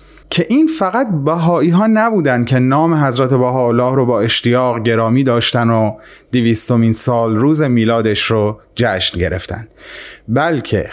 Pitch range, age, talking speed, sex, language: 115-165 Hz, 30-49, 135 wpm, male, Persian